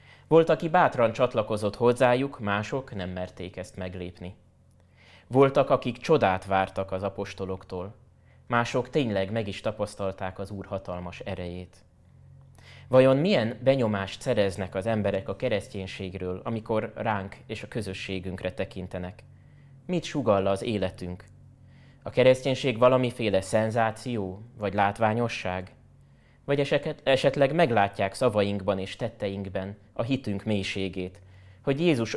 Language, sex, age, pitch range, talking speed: Hungarian, male, 20-39, 95-125 Hz, 110 wpm